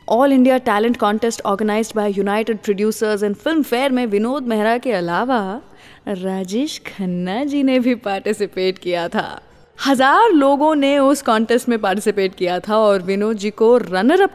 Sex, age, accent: female, 20-39, Indian